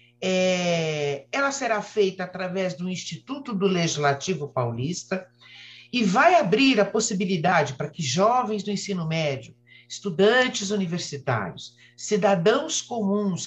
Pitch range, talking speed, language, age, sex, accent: 150-215 Hz, 105 wpm, Portuguese, 60-79, male, Brazilian